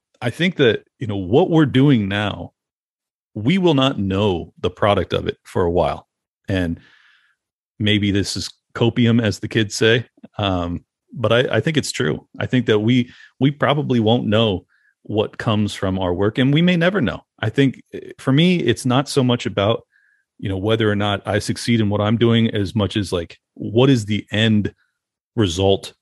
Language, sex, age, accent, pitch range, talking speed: English, male, 40-59, American, 100-130 Hz, 190 wpm